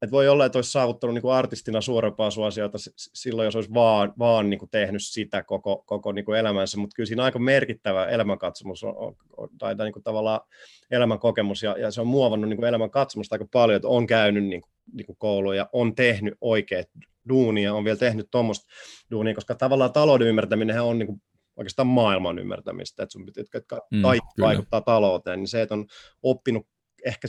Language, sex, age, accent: Finnish, male, 30-49, native